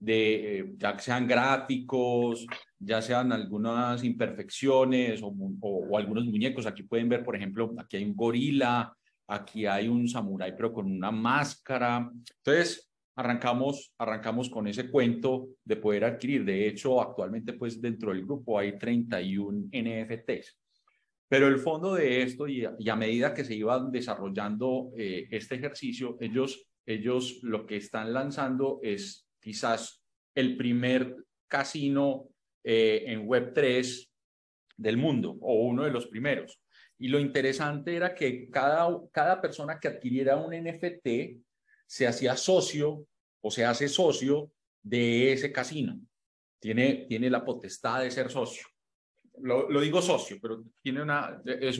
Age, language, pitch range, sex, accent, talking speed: 30-49, Spanish, 115-135 Hz, male, Colombian, 145 wpm